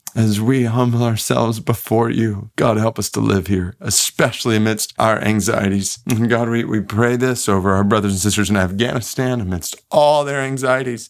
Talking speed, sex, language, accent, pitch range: 175 wpm, male, English, American, 105-125 Hz